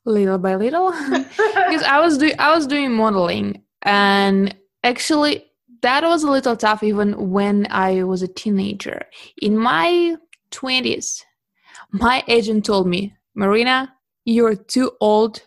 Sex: female